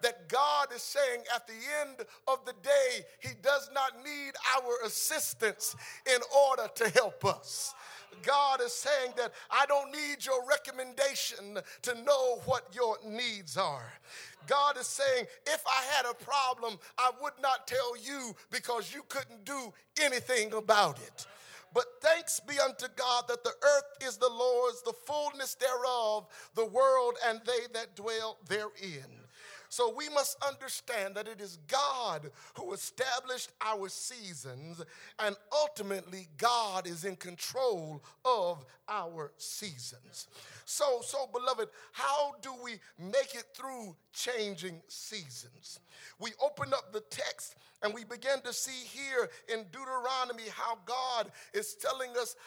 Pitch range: 215-270 Hz